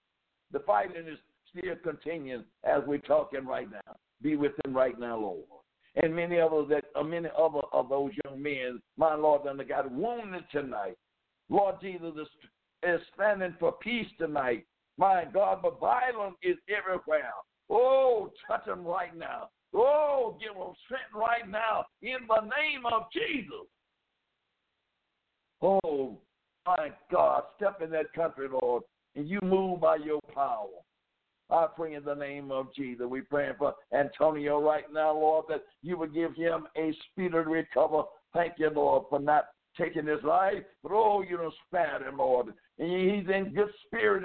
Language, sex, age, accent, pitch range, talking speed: English, male, 60-79, American, 145-200 Hz, 160 wpm